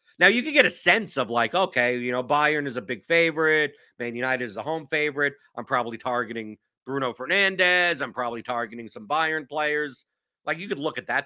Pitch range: 115-155 Hz